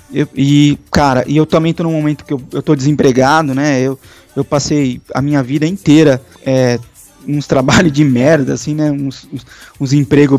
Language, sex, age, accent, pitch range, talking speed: Portuguese, male, 20-39, Brazilian, 135-165 Hz, 190 wpm